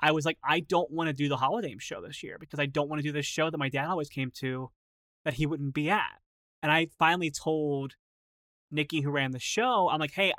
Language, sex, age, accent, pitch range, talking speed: English, male, 20-39, American, 135-160 Hz, 255 wpm